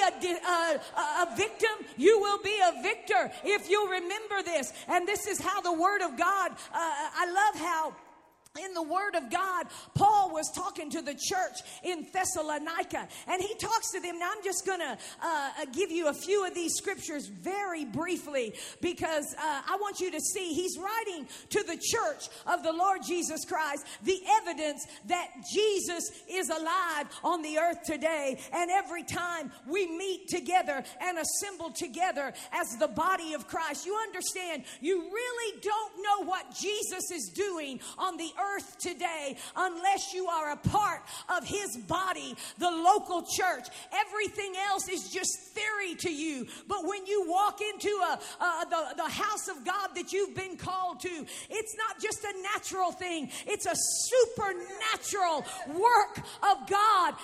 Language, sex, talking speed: English, female, 165 wpm